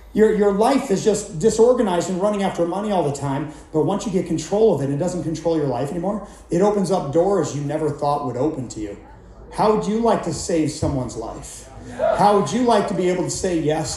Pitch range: 165-215 Hz